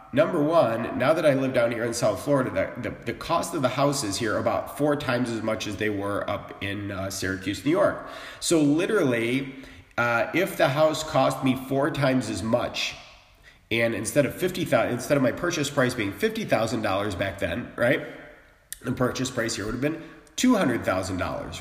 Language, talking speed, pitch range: English, 205 wpm, 115-145 Hz